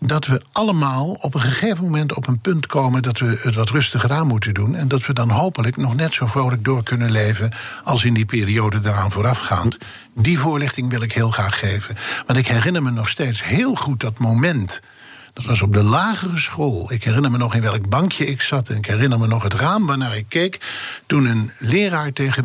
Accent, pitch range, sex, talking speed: Dutch, 110-140 Hz, male, 220 wpm